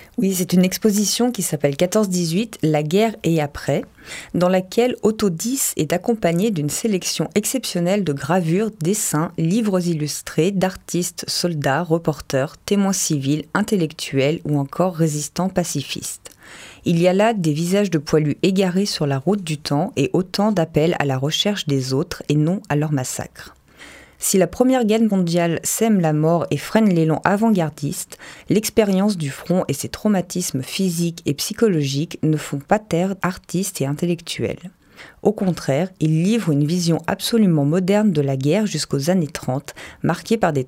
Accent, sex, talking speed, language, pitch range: French, female, 160 wpm, French, 150-200 Hz